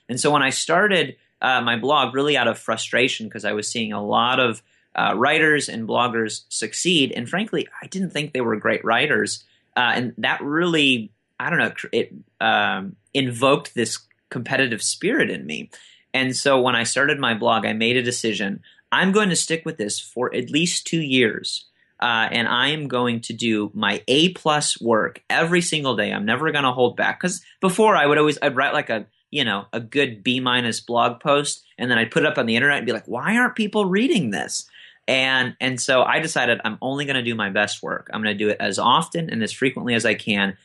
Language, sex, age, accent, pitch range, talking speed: English, male, 30-49, American, 110-145 Hz, 220 wpm